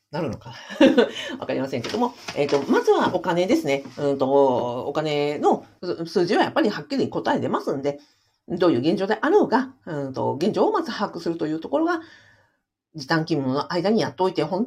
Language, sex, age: Japanese, female, 50-69